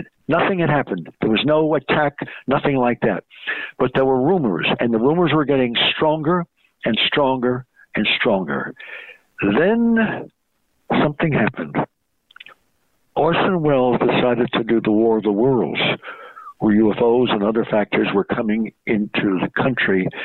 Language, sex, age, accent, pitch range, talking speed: English, male, 60-79, American, 105-140 Hz, 140 wpm